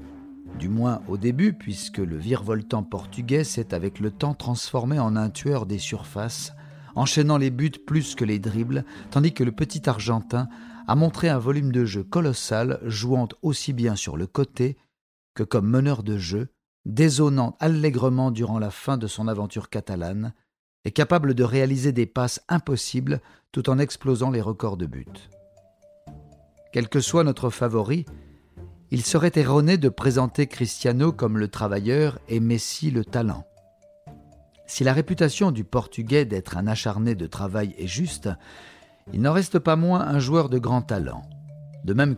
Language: French